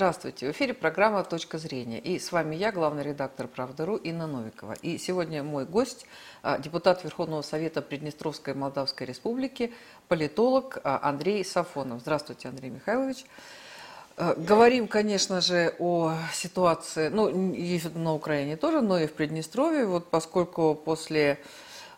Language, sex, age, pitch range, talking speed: Russian, female, 50-69, 145-185 Hz, 130 wpm